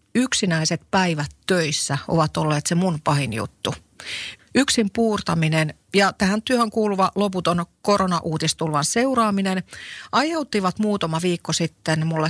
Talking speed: 110 wpm